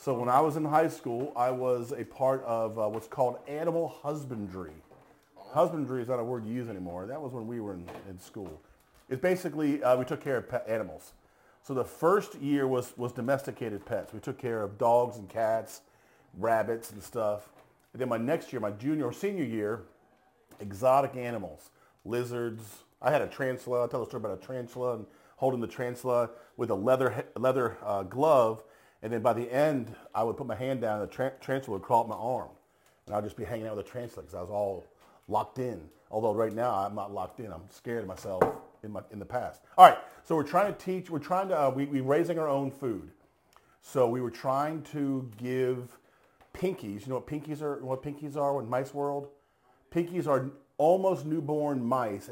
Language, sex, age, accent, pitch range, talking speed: English, male, 40-59, American, 115-140 Hz, 210 wpm